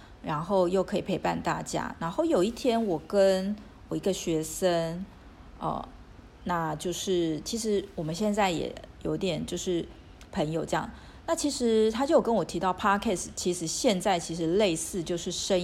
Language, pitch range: Chinese, 160-210 Hz